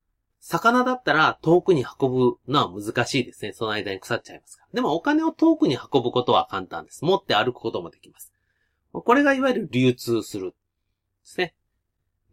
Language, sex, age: Japanese, male, 30-49